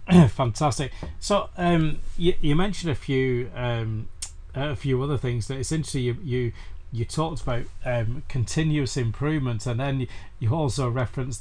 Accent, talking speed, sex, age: British, 155 wpm, male, 40-59